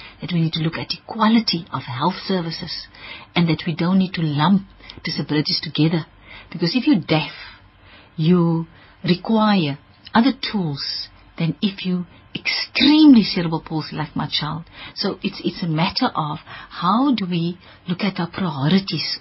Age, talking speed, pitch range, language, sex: 50-69, 155 wpm, 165-220 Hz, English, female